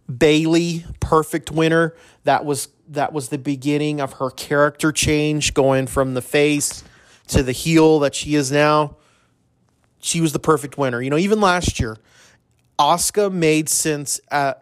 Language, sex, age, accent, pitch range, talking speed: English, male, 30-49, American, 135-160 Hz, 155 wpm